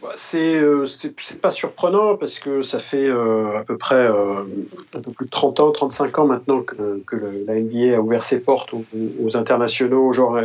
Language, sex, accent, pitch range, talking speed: French, male, French, 125-150 Hz, 220 wpm